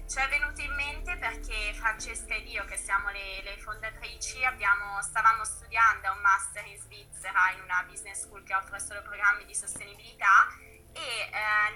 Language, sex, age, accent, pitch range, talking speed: Italian, female, 20-39, native, 200-240 Hz, 170 wpm